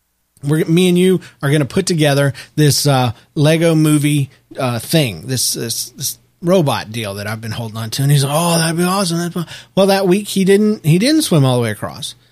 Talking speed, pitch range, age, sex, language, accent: 235 wpm, 120-185 Hz, 40-59, male, English, American